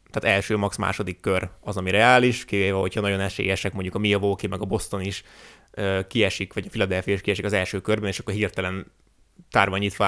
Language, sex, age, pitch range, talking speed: Hungarian, male, 20-39, 100-120 Hz, 210 wpm